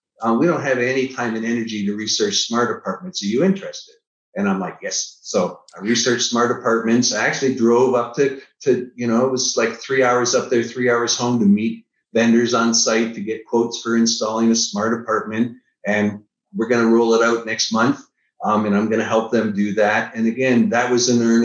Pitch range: 110-125 Hz